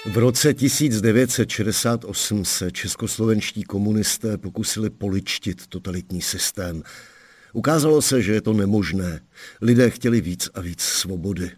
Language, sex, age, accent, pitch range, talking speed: Czech, male, 50-69, native, 90-105 Hz, 115 wpm